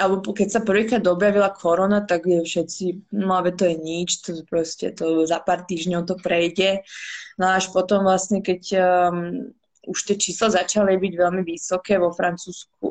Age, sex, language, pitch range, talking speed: 20-39, female, Slovak, 175-200 Hz, 165 wpm